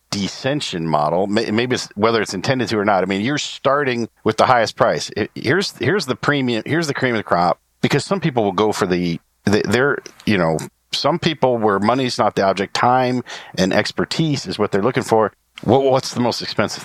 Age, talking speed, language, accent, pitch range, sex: 50-69, 205 wpm, English, American, 100-135 Hz, male